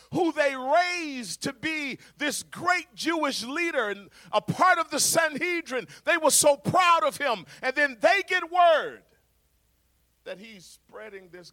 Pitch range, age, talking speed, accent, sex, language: 125-200 Hz, 40-59, 155 wpm, American, male, English